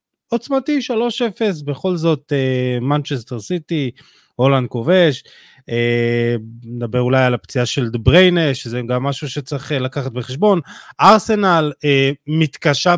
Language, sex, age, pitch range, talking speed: Hebrew, male, 20-39, 130-180 Hz, 110 wpm